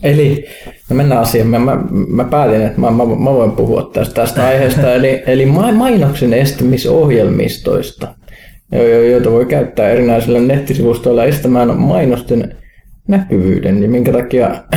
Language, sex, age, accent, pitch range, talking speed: Finnish, male, 20-39, native, 115-160 Hz, 130 wpm